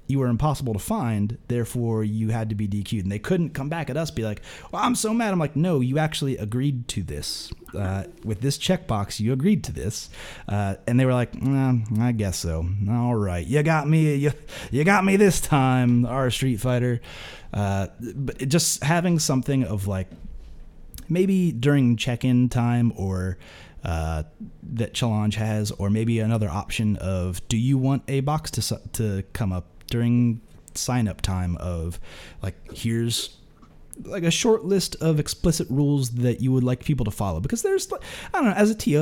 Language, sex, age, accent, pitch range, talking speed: English, male, 30-49, American, 100-140 Hz, 190 wpm